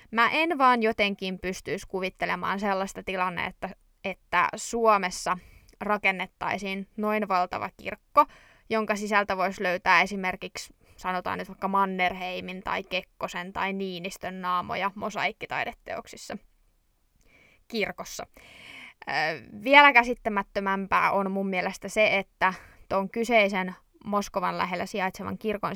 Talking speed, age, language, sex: 100 wpm, 20-39, Finnish, female